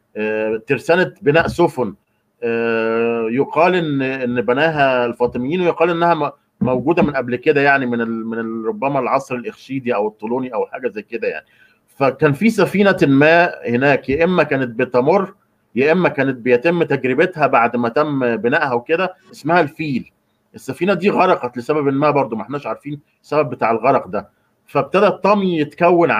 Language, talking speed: Arabic, 145 wpm